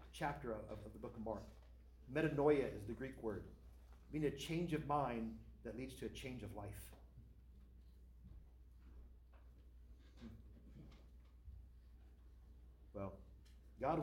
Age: 40-59